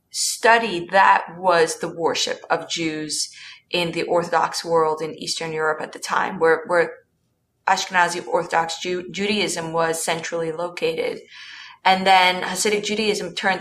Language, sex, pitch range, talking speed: English, female, 165-200 Hz, 140 wpm